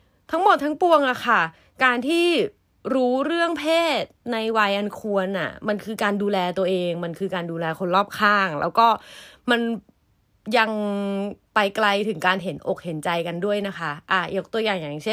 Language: Thai